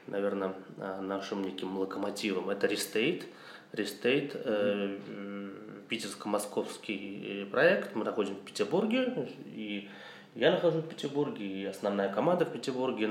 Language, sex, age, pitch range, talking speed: Russian, male, 20-39, 100-165 Hz, 110 wpm